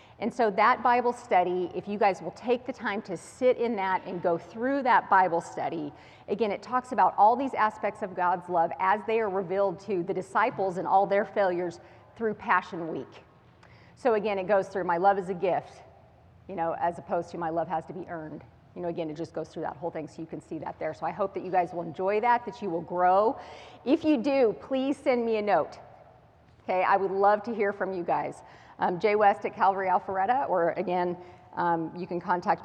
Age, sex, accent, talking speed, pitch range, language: 40-59, female, American, 230 wpm, 175-220 Hz, English